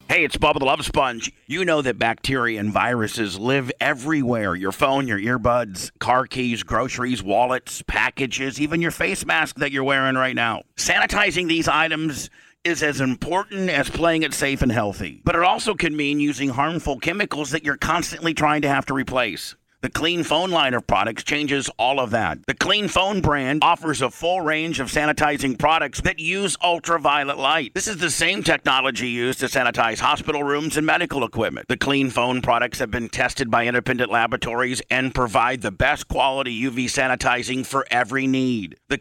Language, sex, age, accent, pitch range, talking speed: English, male, 50-69, American, 125-160 Hz, 185 wpm